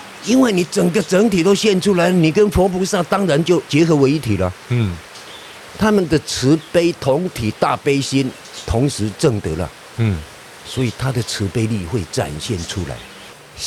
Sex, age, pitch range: male, 50-69, 105-155 Hz